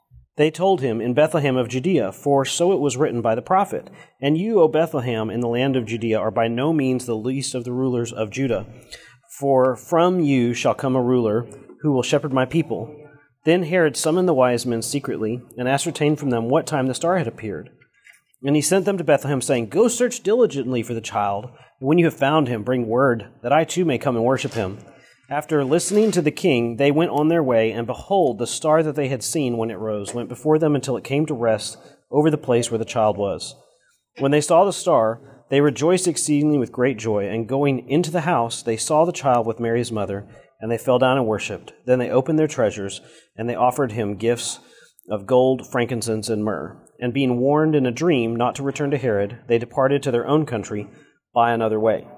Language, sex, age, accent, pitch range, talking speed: English, male, 40-59, American, 115-150 Hz, 220 wpm